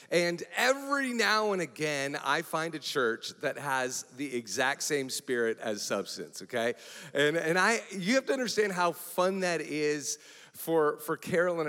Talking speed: 165 wpm